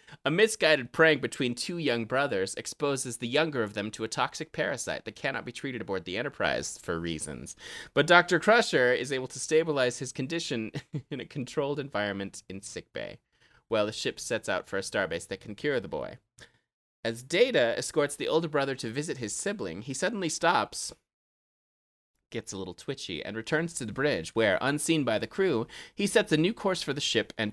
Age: 30-49